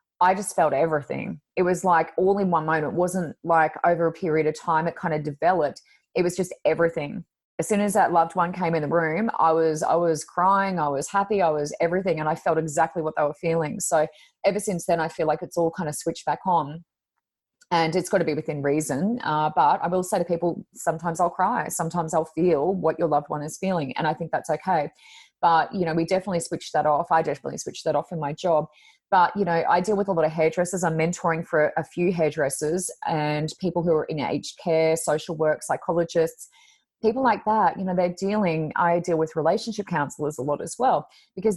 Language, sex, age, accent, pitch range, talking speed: English, female, 30-49, Australian, 160-185 Hz, 230 wpm